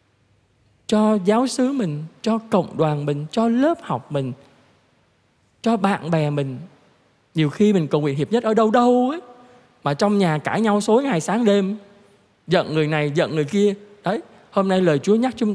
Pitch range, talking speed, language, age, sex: 140-200 Hz, 190 wpm, Vietnamese, 20-39, male